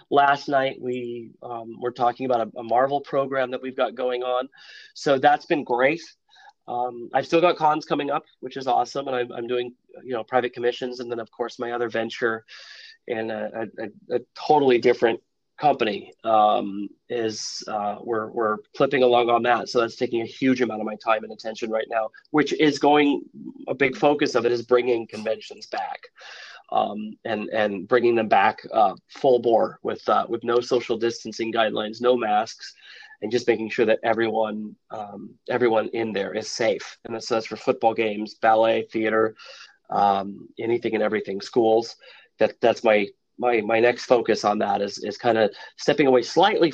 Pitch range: 110-130 Hz